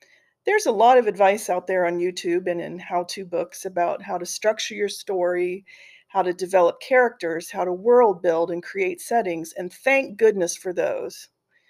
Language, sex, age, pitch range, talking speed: English, female, 40-59, 185-255 Hz, 180 wpm